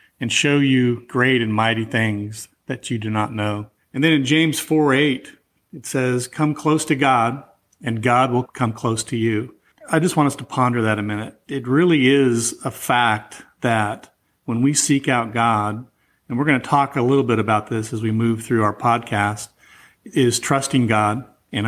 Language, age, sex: English, 40-59, male